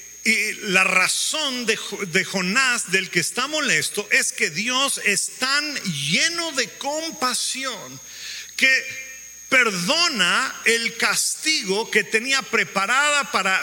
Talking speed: 115 wpm